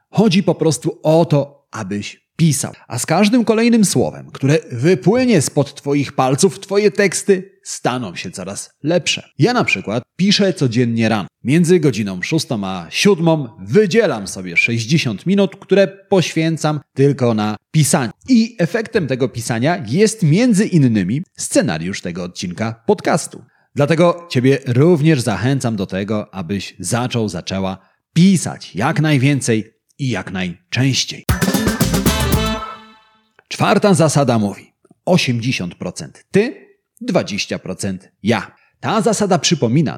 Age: 30-49